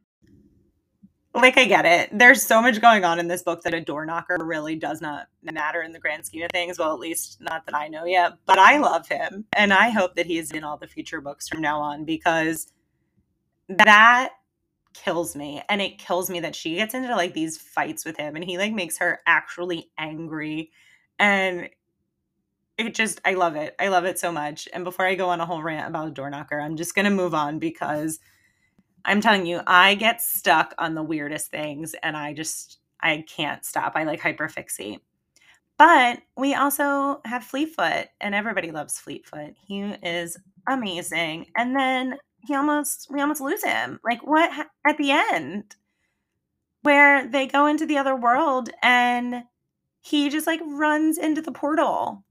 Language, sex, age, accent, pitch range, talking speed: English, female, 20-39, American, 160-245 Hz, 190 wpm